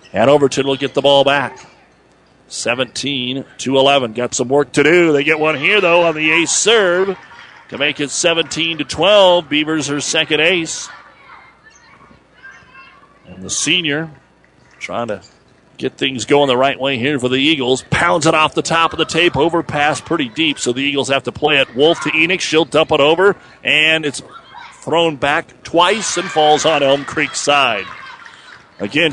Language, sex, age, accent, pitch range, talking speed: English, male, 40-59, American, 130-165 Hz, 175 wpm